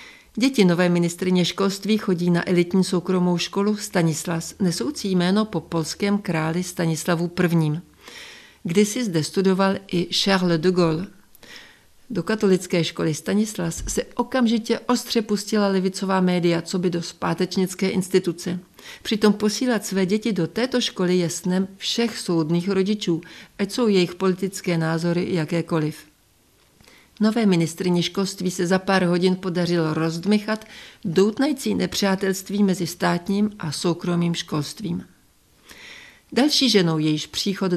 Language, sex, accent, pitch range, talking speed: Czech, female, native, 175-205 Hz, 120 wpm